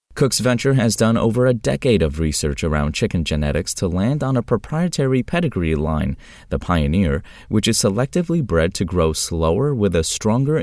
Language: English